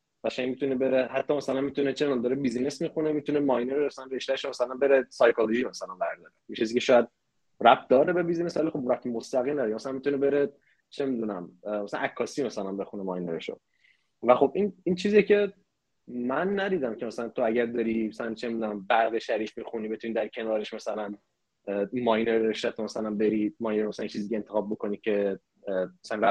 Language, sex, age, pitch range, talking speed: Persian, male, 20-39, 115-160 Hz, 180 wpm